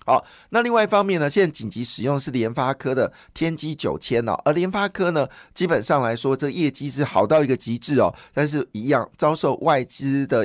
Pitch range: 125-160 Hz